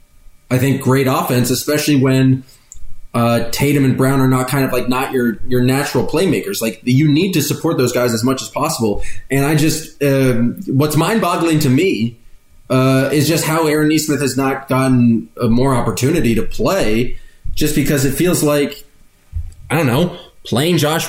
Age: 20-39